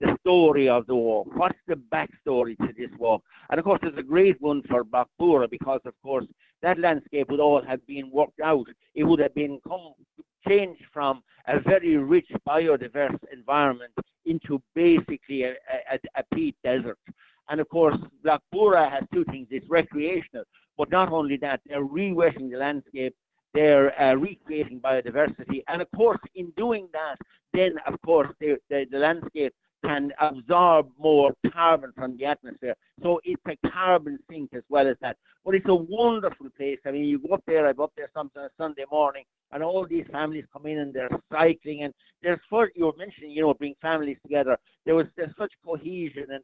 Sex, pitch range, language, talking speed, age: male, 140-170 Hz, English, 185 wpm, 60-79